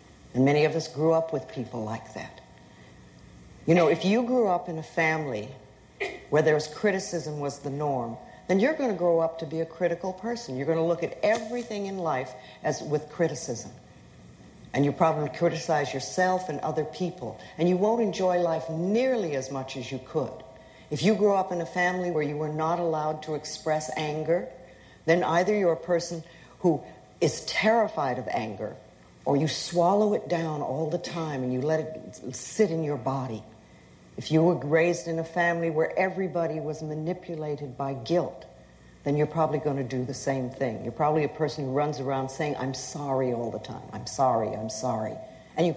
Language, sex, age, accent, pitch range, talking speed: English, female, 60-79, American, 130-175 Hz, 195 wpm